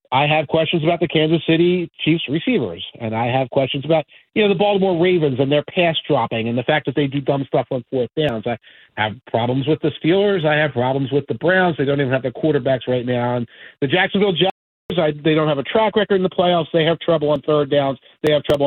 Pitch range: 140-185 Hz